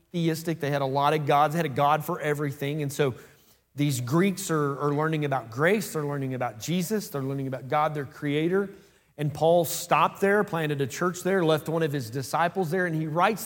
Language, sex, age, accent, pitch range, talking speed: English, male, 30-49, American, 150-195 Hz, 220 wpm